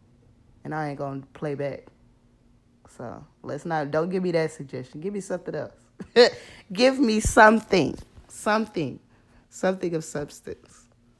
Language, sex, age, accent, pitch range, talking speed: English, female, 20-39, American, 130-195 Hz, 140 wpm